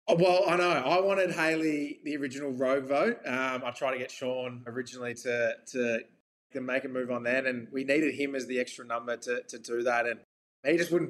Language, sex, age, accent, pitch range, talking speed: English, male, 20-39, Australian, 120-140 Hz, 220 wpm